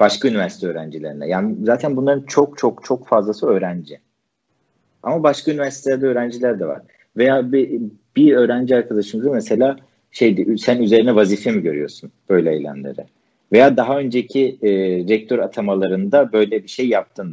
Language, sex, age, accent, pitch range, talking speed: Turkish, male, 50-69, native, 105-130 Hz, 140 wpm